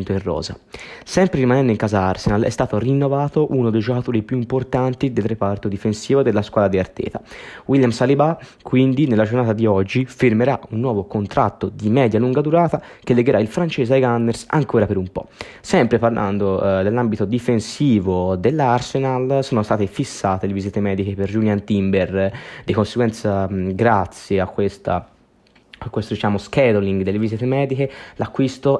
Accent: native